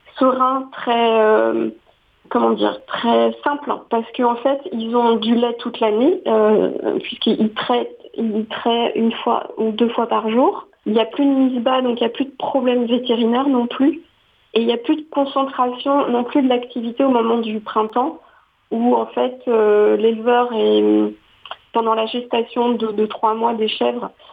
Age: 40-59